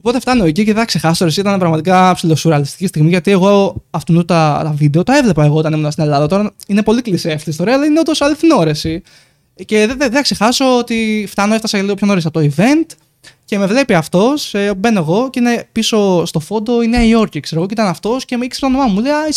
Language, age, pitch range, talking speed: Greek, 20-39, 170-250 Hz, 240 wpm